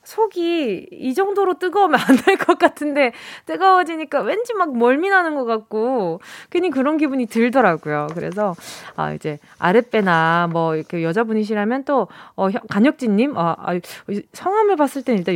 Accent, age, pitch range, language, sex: native, 20-39, 190-305 Hz, Korean, female